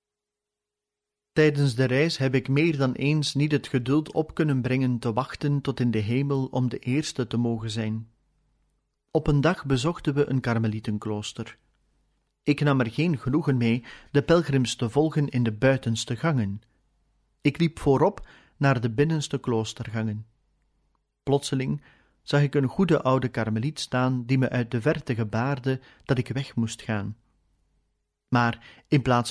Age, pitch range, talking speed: 40-59, 115-145 Hz, 155 wpm